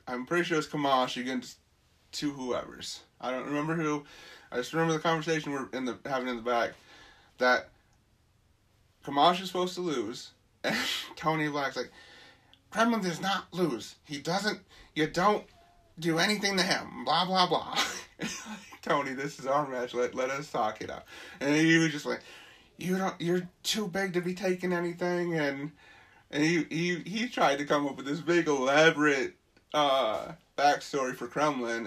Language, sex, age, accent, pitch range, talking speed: English, male, 30-49, American, 125-170 Hz, 170 wpm